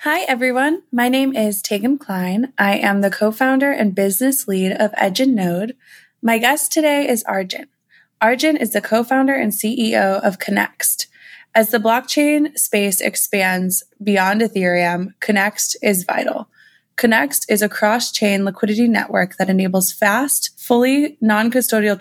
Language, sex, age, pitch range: English, female, 20-39, 195-245 Hz